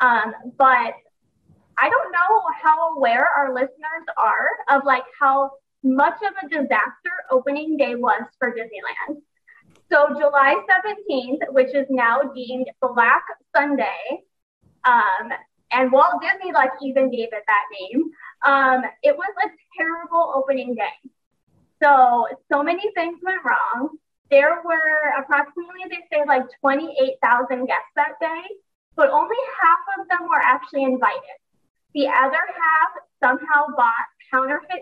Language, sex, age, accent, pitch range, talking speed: English, female, 20-39, American, 260-355 Hz, 135 wpm